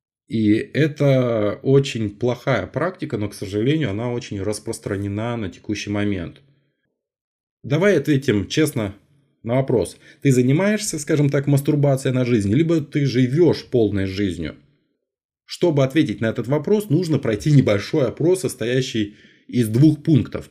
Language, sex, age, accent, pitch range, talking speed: Russian, male, 20-39, native, 105-145 Hz, 130 wpm